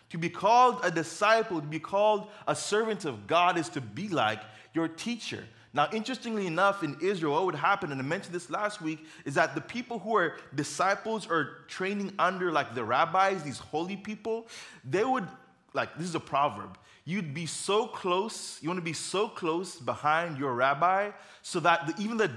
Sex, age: male, 20-39